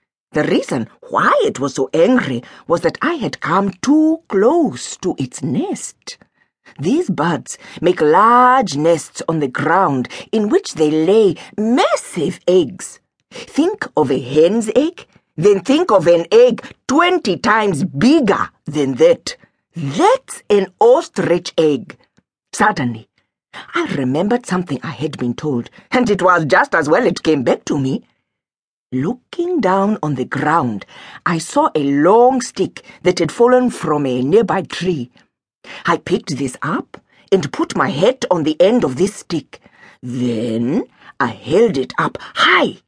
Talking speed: 150 wpm